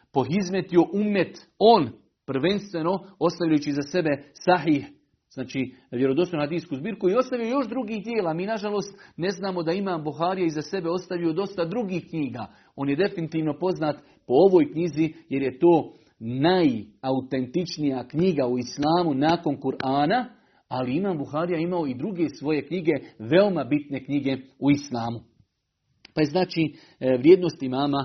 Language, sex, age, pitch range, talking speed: Croatian, male, 40-59, 135-175 Hz, 135 wpm